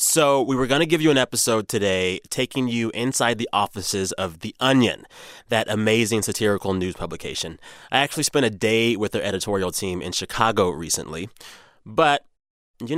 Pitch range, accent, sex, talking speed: 100-130 Hz, American, male, 170 wpm